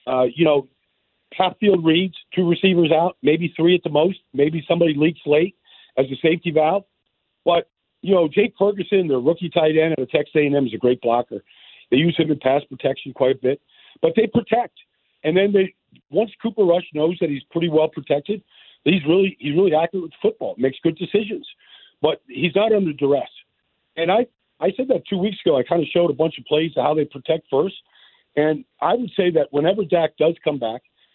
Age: 50-69